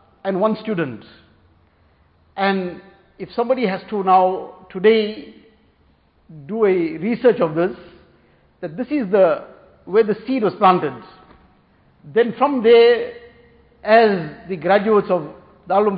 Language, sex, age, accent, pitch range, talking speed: English, male, 60-79, Indian, 180-215 Hz, 120 wpm